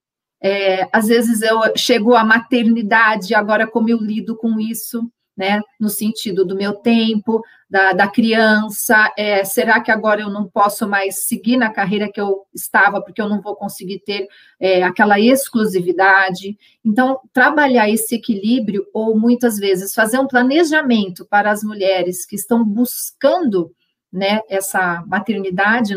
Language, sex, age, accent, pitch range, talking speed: Portuguese, female, 40-59, Brazilian, 200-235 Hz, 150 wpm